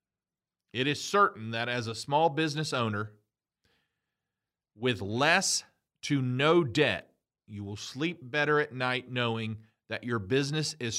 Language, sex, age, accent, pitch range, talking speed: English, male, 40-59, American, 115-165 Hz, 135 wpm